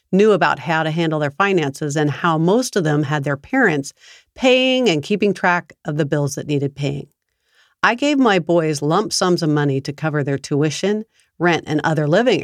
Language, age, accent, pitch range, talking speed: English, 50-69, American, 150-200 Hz, 200 wpm